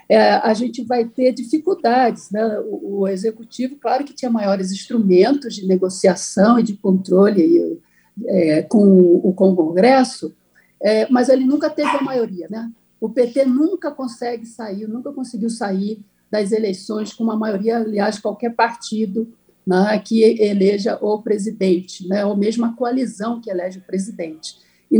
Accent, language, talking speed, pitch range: Brazilian, Portuguese, 155 wpm, 200-255 Hz